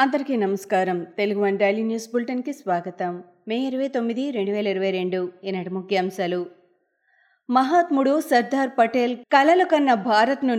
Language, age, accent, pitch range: Telugu, 20-39, native, 205-260 Hz